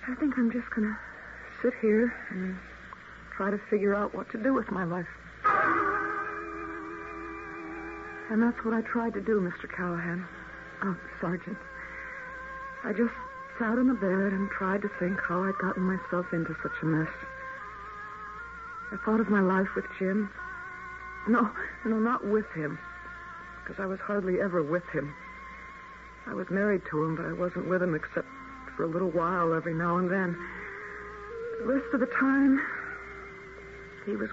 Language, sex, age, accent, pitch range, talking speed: English, female, 60-79, American, 185-265 Hz, 165 wpm